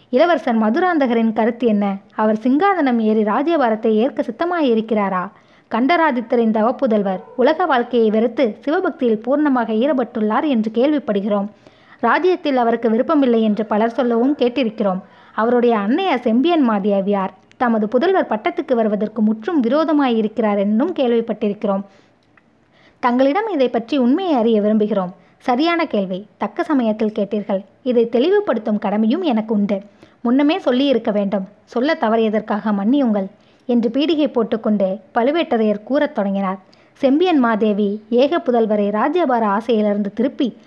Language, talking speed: Tamil, 110 wpm